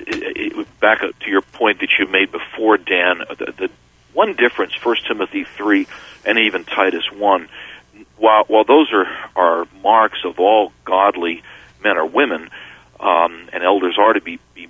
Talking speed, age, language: 175 wpm, 50-69, English